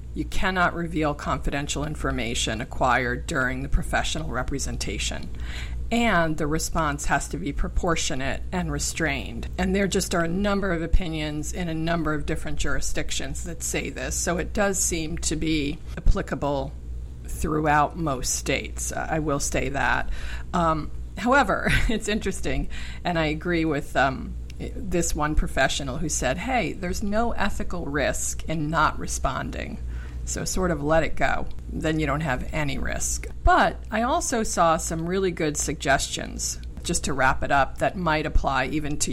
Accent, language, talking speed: American, English, 155 wpm